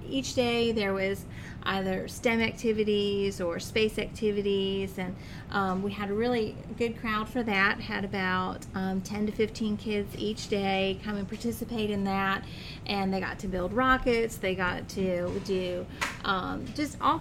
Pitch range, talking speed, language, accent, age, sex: 190-225 Hz, 165 wpm, English, American, 30-49, female